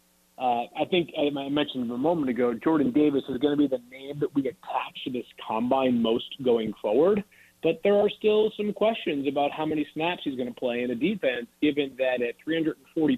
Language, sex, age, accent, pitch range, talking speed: English, male, 40-59, American, 125-170 Hz, 210 wpm